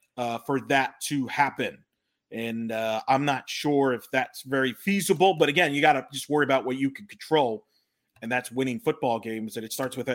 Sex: male